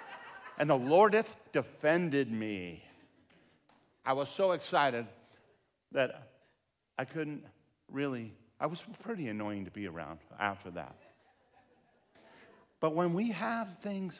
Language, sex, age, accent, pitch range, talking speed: English, male, 50-69, American, 105-145 Hz, 120 wpm